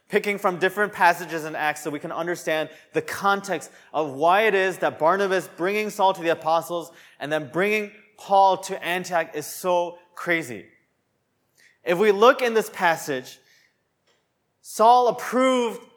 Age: 20-39